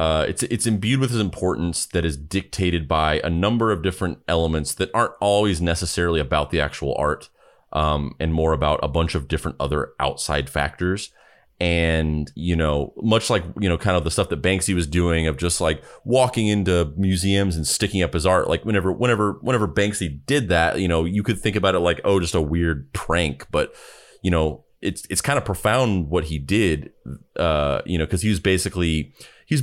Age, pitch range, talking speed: 30-49, 80-100 Hz, 205 wpm